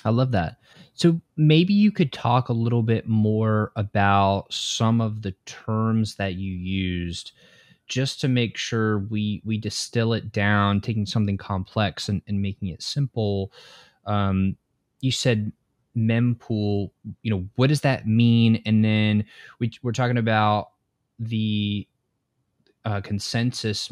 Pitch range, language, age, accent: 100-115 Hz, English, 20-39, American